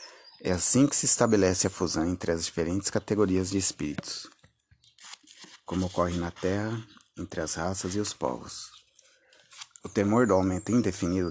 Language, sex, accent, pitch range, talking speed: Portuguese, male, Brazilian, 90-110 Hz, 150 wpm